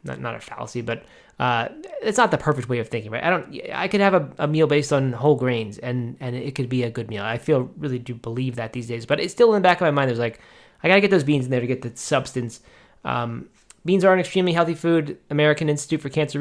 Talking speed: 275 wpm